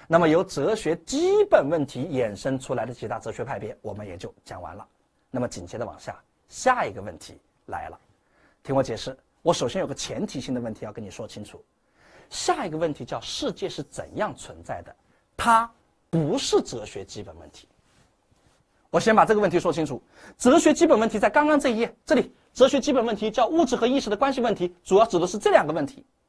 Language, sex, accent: English, male, Chinese